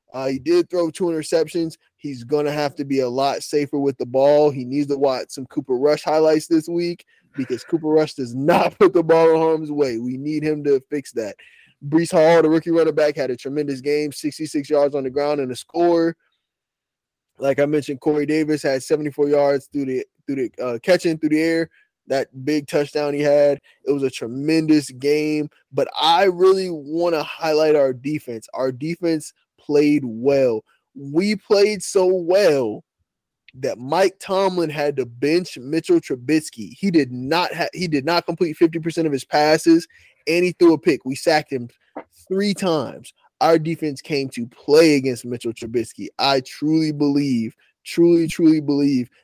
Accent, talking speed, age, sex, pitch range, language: American, 180 wpm, 20-39, male, 140-165 Hz, English